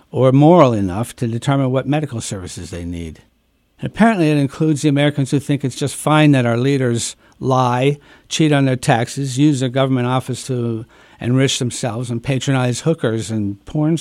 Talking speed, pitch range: 170 wpm, 115-140 Hz